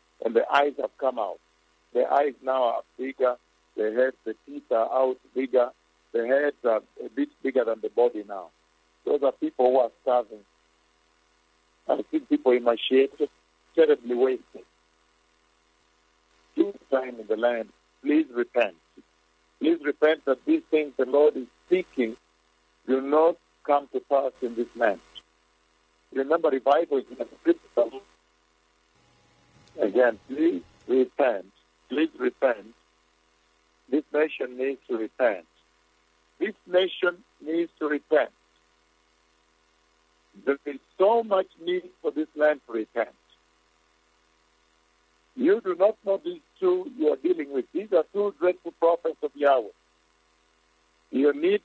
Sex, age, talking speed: male, 50-69, 135 wpm